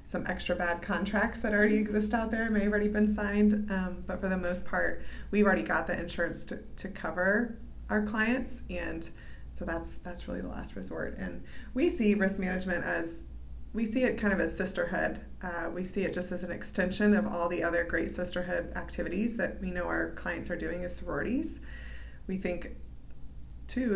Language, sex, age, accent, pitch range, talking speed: English, female, 20-39, American, 170-205 Hz, 195 wpm